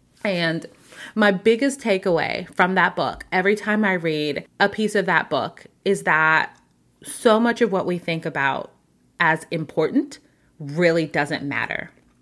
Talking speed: 145 wpm